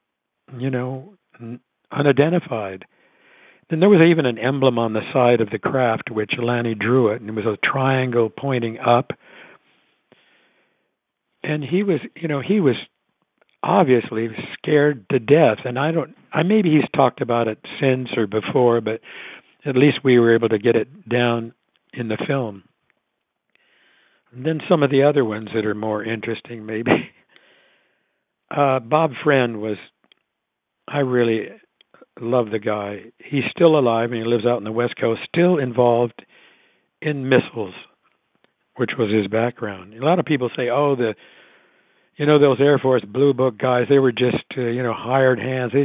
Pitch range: 115-140 Hz